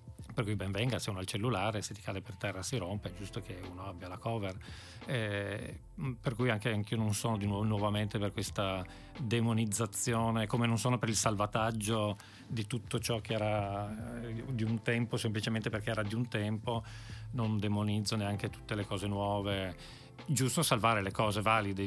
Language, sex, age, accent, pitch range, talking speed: Italian, male, 40-59, native, 100-115 Hz, 190 wpm